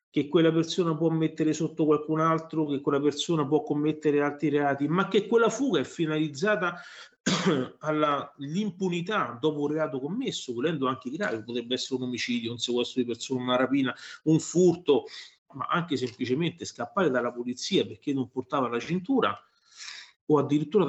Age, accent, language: 40-59, native, Italian